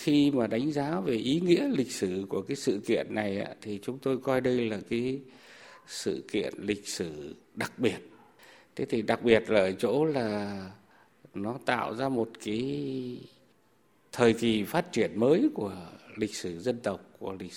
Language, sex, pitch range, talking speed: Vietnamese, male, 105-140 Hz, 180 wpm